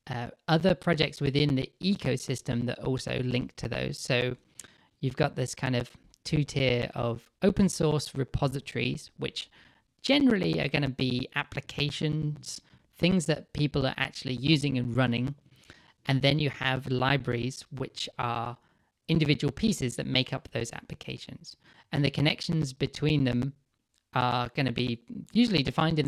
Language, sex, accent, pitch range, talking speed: English, male, British, 125-150 Hz, 145 wpm